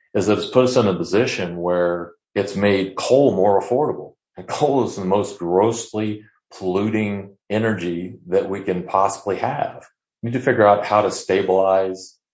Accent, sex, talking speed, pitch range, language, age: American, male, 170 wpm, 90-105 Hz, English, 40-59